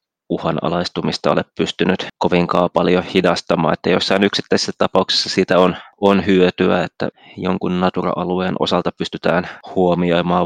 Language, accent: Finnish, native